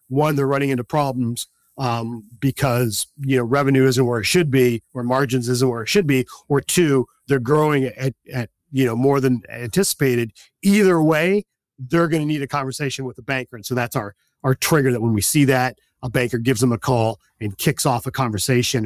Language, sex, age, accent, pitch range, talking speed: English, male, 40-59, American, 120-145 Hz, 205 wpm